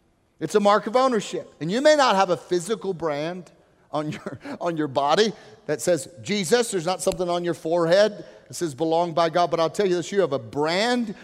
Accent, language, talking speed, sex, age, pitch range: American, English, 220 wpm, male, 40-59, 170-230 Hz